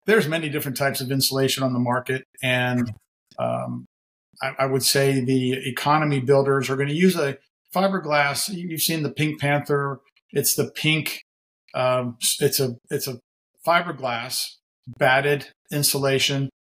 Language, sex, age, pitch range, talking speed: English, male, 50-69, 130-150 Hz, 145 wpm